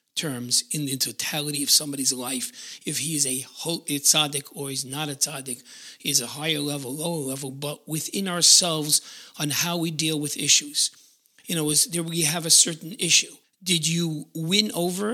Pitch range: 135-175 Hz